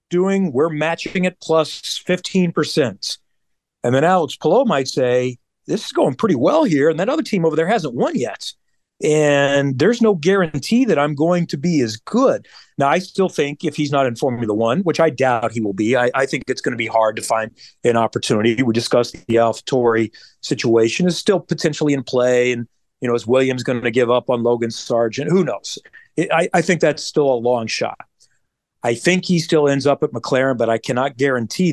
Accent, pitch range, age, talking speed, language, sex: American, 120-155 Hz, 40-59, 210 wpm, English, male